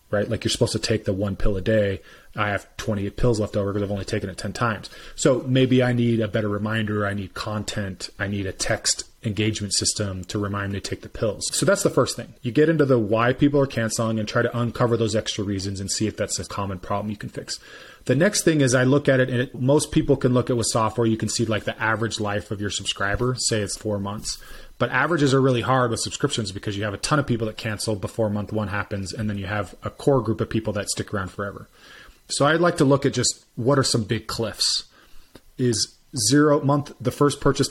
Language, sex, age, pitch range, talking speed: English, male, 30-49, 105-125 Hz, 255 wpm